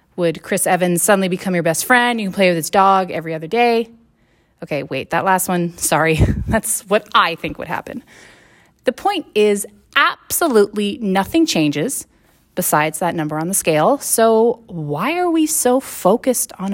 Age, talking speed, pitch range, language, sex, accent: 30-49, 170 wpm, 175-270 Hz, English, female, American